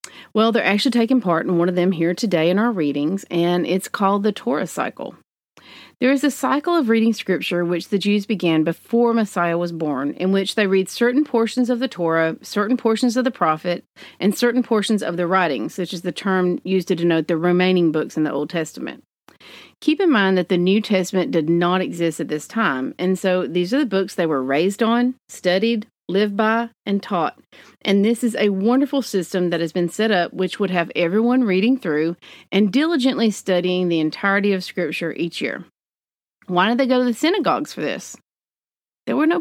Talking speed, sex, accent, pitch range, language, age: 205 wpm, female, American, 175-235 Hz, English, 40-59